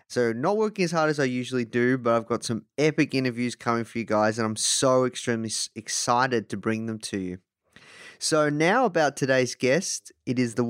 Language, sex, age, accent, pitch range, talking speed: English, male, 20-39, Australian, 115-145 Hz, 205 wpm